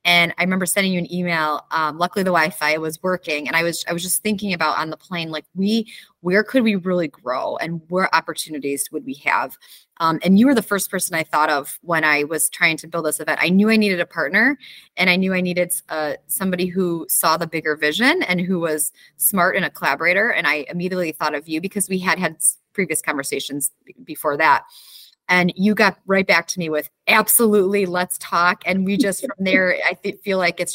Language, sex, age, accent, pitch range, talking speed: English, female, 20-39, American, 155-190 Hz, 225 wpm